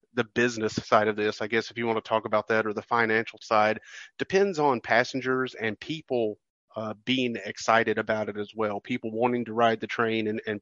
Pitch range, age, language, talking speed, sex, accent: 110-125 Hz, 40-59, English, 215 wpm, male, American